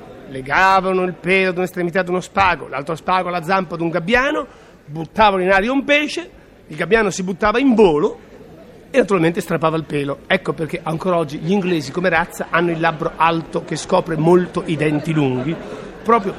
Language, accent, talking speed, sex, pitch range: Italian, native, 185 wpm, male, 160-220 Hz